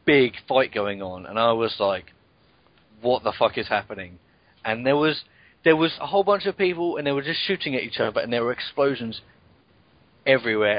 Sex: male